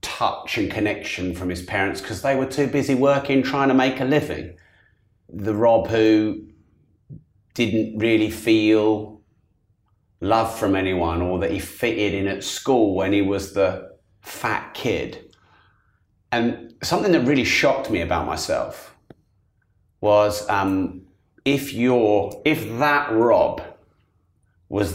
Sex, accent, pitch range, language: male, British, 95-110 Hz, English